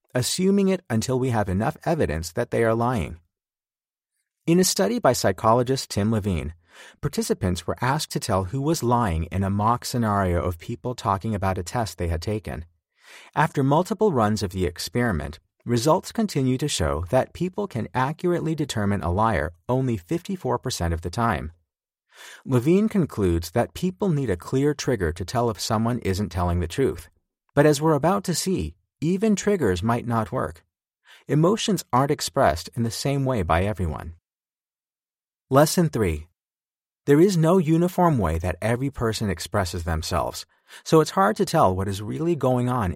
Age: 40-59